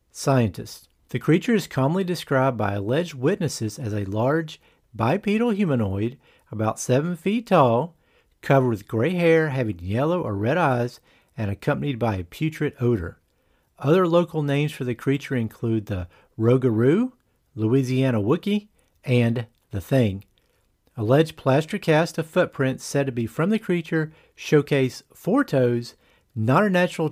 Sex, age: male, 50-69